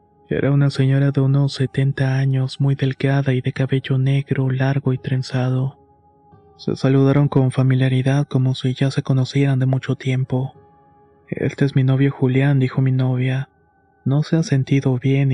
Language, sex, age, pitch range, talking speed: Spanish, male, 30-49, 130-140 Hz, 160 wpm